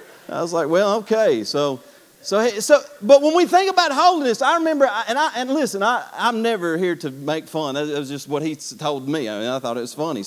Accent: American